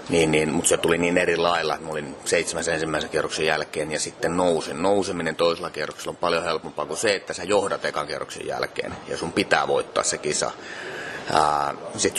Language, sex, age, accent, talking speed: Finnish, male, 30-49, native, 175 wpm